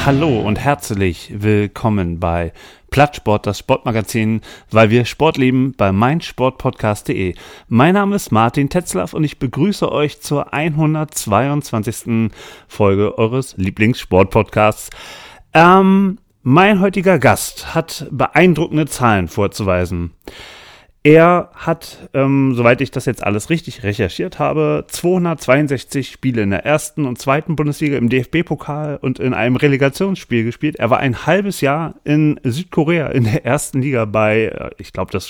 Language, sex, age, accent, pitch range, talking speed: German, male, 30-49, German, 115-155 Hz, 130 wpm